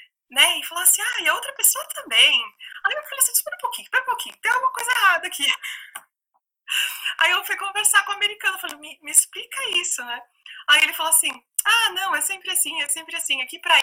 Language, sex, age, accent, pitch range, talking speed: English, female, 20-39, Brazilian, 265-395 Hz, 225 wpm